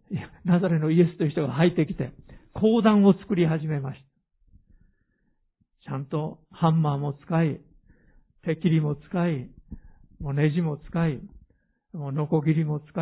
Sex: male